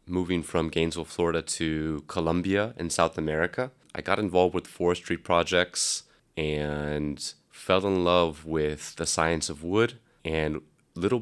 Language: English